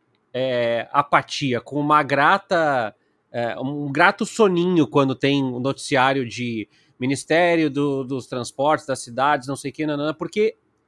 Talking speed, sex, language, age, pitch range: 120 wpm, male, Portuguese, 30-49, 140-225 Hz